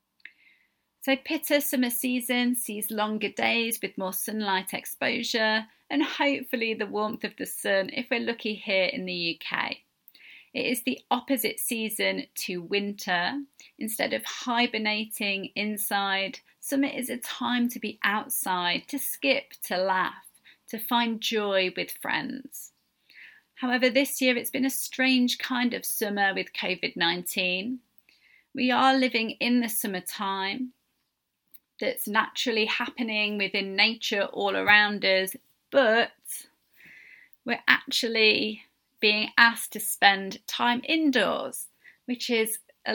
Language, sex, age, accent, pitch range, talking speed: English, female, 30-49, British, 200-255 Hz, 125 wpm